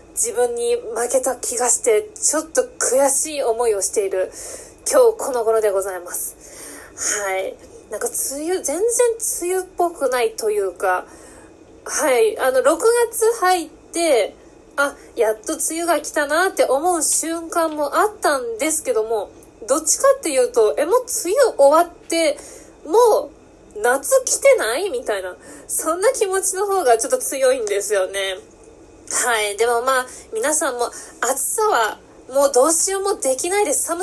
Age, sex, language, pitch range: 20-39, female, Japanese, 260-435 Hz